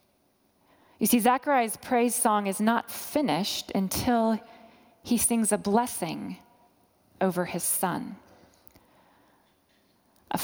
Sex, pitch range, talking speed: female, 190-230 Hz, 100 wpm